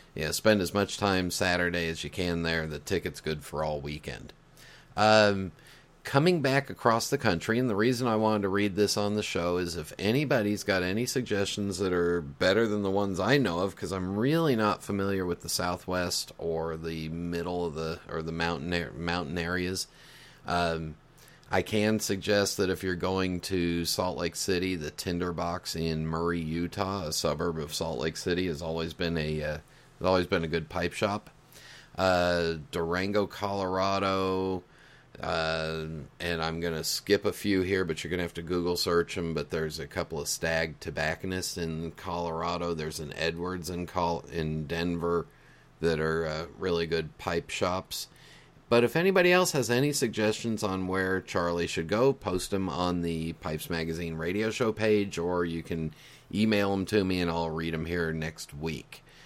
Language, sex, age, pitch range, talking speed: English, male, 40-59, 80-100 Hz, 180 wpm